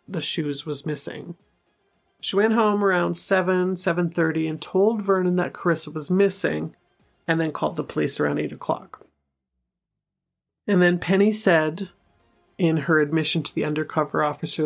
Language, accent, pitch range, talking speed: English, American, 155-190 Hz, 145 wpm